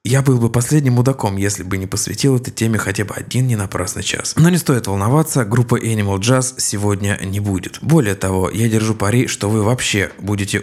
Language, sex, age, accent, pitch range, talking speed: Russian, male, 20-39, native, 100-120 Hz, 205 wpm